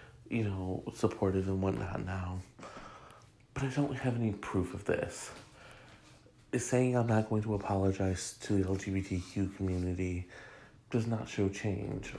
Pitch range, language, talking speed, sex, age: 95-120 Hz, English, 140 wpm, male, 30-49